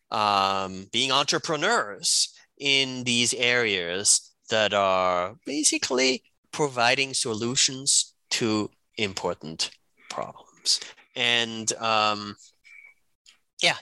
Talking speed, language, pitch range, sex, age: 75 wpm, English, 110-150 Hz, male, 30-49